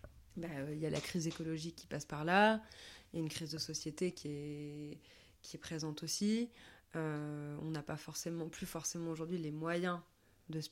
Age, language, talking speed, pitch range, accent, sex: 20-39, French, 205 wpm, 150-180 Hz, French, female